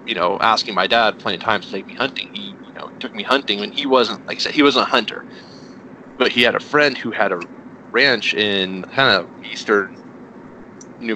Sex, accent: male, American